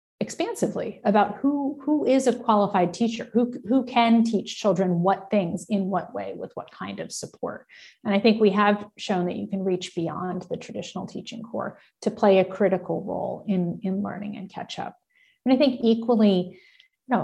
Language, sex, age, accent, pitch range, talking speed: English, female, 30-49, American, 190-230 Hz, 190 wpm